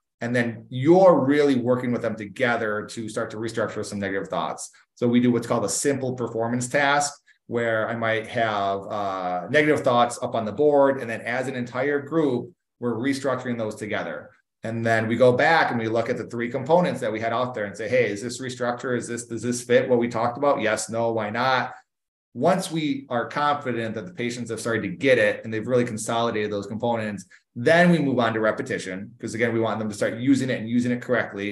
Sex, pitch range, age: male, 110-125 Hz, 30-49